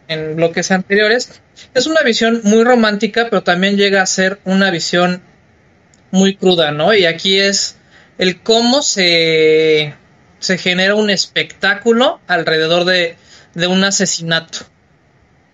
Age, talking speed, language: 20-39, 125 wpm, Spanish